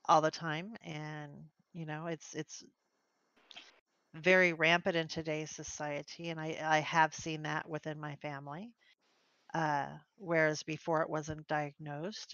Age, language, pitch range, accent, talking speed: 40-59, English, 150-165 Hz, American, 135 wpm